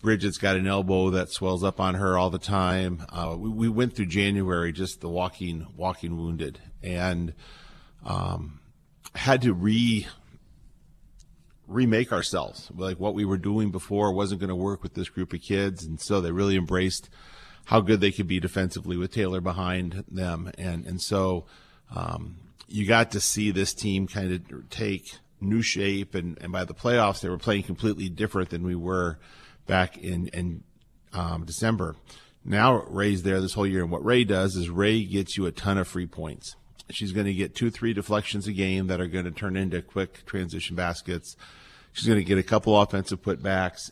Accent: American